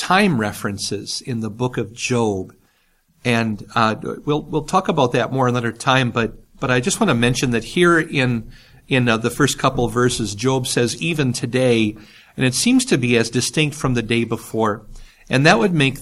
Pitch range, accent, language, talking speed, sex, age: 115-145 Hz, American, English, 200 wpm, male, 50-69